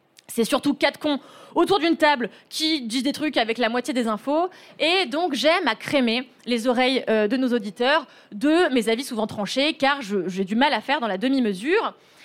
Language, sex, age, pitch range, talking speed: French, female, 20-39, 220-305 Hz, 200 wpm